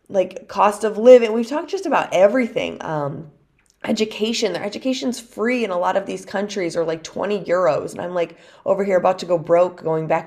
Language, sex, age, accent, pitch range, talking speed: English, female, 20-39, American, 150-205 Hz, 205 wpm